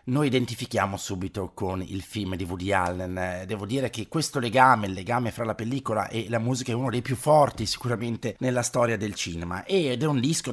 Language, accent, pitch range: Italian, native, 100-125 Hz